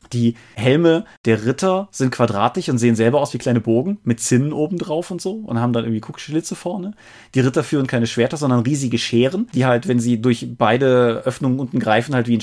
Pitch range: 115-130 Hz